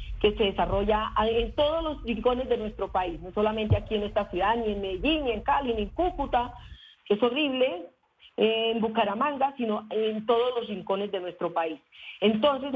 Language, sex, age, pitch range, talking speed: Spanish, female, 40-59, 210-255 Hz, 185 wpm